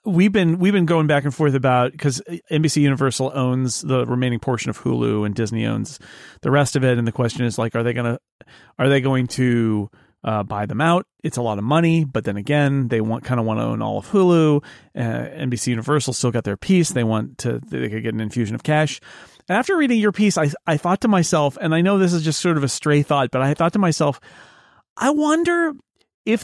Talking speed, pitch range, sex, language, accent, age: 240 wpm, 130-175 Hz, male, English, American, 40-59